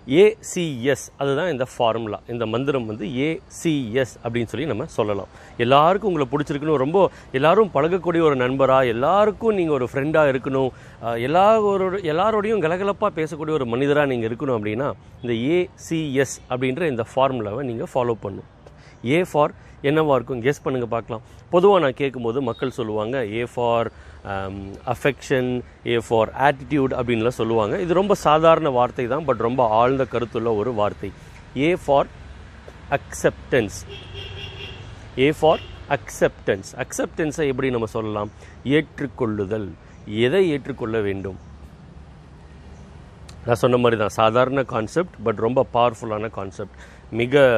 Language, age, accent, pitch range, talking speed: Tamil, 30-49, native, 105-145 Hz, 130 wpm